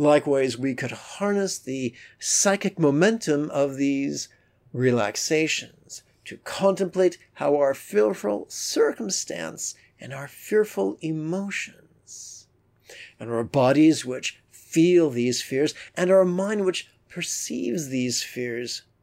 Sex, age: male, 50-69